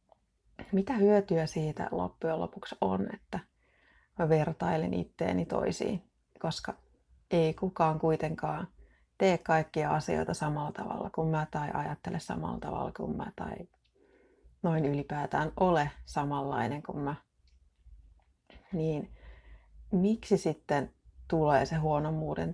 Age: 30-49